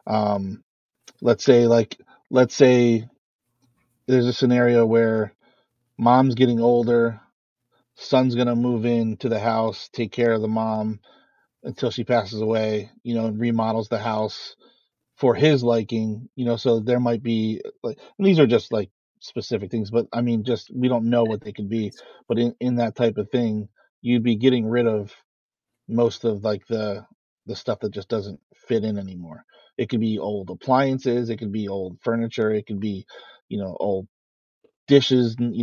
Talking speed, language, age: 175 wpm, English, 30-49